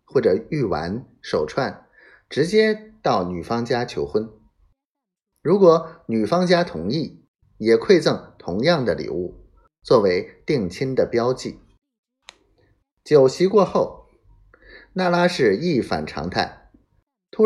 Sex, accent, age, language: male, native, 30-49, Chinese